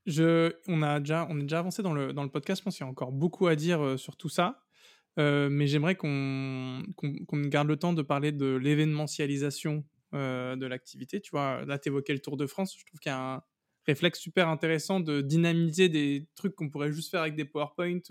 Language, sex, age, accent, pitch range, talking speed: French, male, 20-39, French, 140-170 Hz, 230 wpm